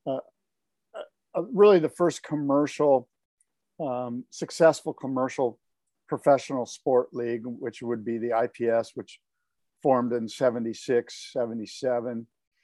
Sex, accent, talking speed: male, American, 105 wpm